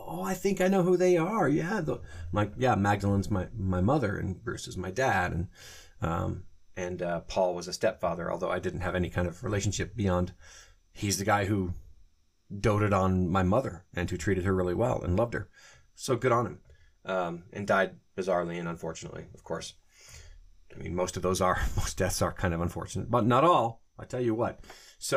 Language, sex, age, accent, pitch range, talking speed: English, male, 30-49, American, 90-115 Hz, 205 wpm